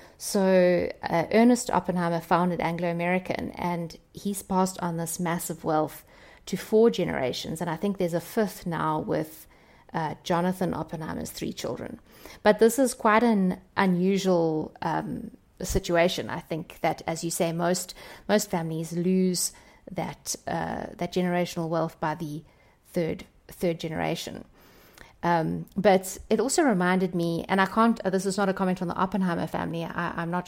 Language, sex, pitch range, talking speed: English, female, 170-200 Hz, 150 wpm